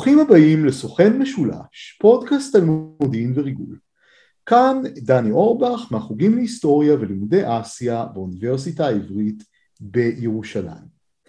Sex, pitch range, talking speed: male, 140-225 Hz, 95 wpm